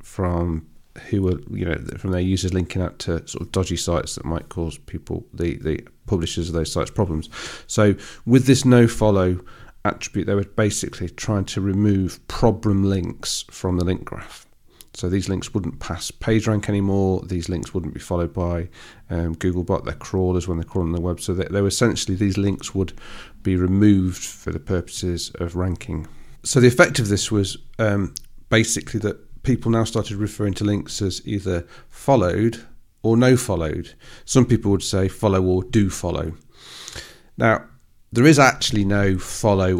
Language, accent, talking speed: English, British, 175 wpm